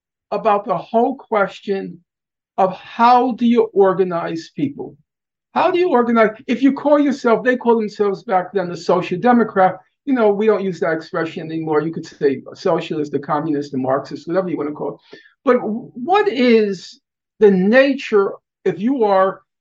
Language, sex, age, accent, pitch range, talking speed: English, male, 50-69, American, 190-245 Hz, 180 wpm